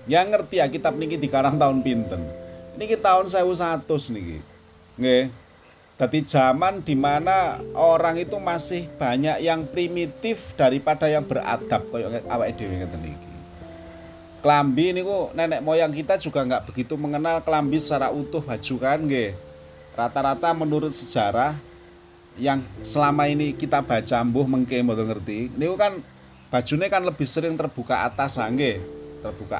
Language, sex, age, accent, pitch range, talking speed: Indonesian, male, 30-49, native, 90-150 Hz, 120 wpm